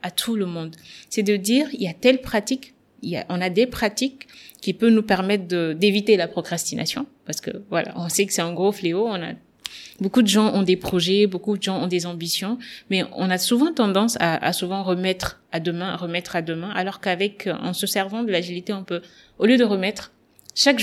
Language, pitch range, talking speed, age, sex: French, 180-220 Hz, 230 wpm, 20-39, female